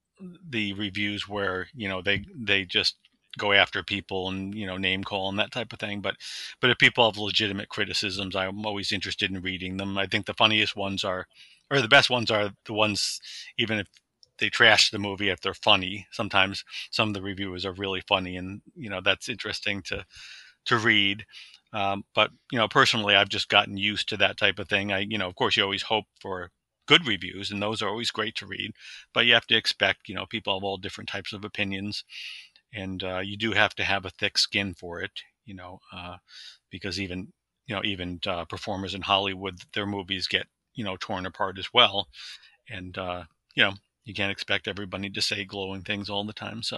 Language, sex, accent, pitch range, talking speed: English, male, American, 95-105 Hz, 215 wpm